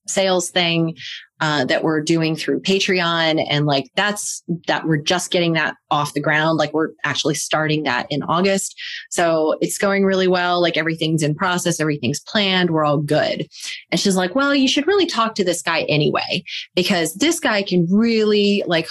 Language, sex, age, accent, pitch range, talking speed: English, female, 30-49, American, 165-215 Hz, 185 wpm